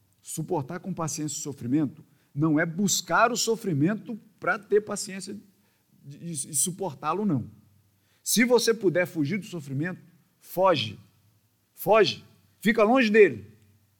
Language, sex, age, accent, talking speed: Portuguese, male, 50-69, Brazilian, 115 wpm